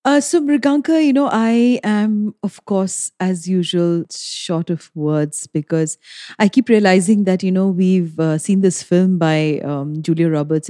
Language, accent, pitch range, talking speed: English, Indian, 170-215 Hz, 170 wpm